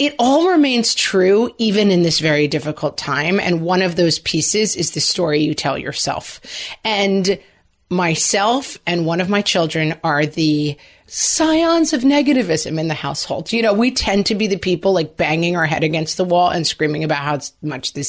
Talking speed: 190 wpm